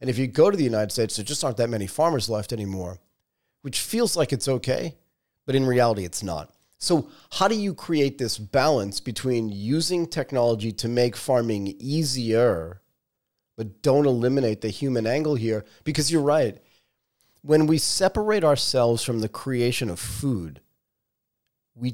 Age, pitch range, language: 30-49, 110-145 Hz, English